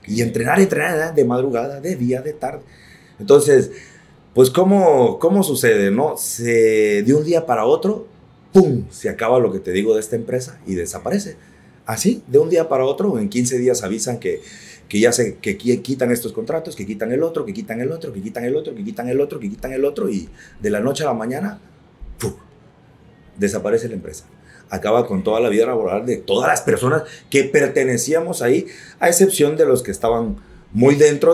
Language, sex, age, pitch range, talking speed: Spanish, male, 30-49, 120-190 Hz, 200 wpm